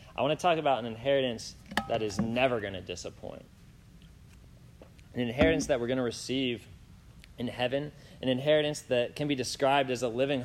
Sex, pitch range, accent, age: male, 115-145 Hz, American, 20-39